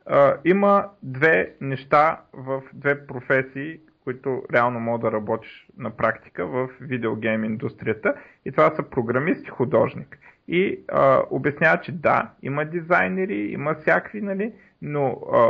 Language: Bulgarian